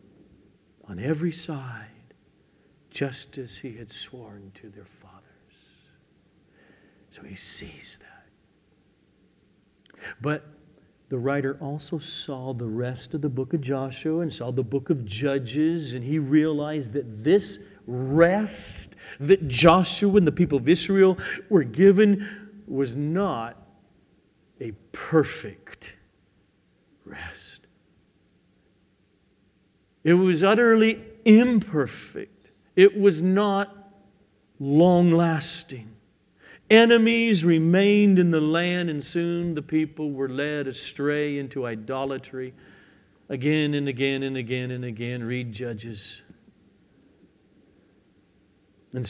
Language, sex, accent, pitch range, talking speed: English, male, American, 110-165 Hz, 105 wpm